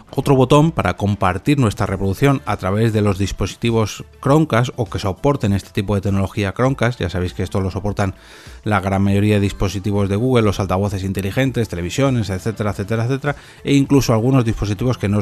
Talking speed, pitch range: 180 wpm, 95-125 Hz